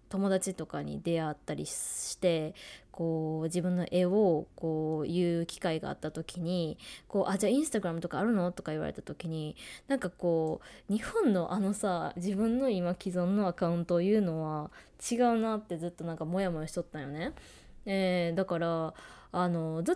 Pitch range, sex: 170-230 Hz, female